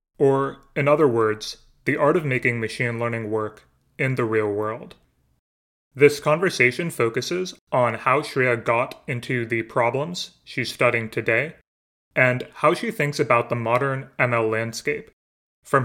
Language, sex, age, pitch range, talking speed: English, male, 30-49, 115-135 Hz, 145 wpm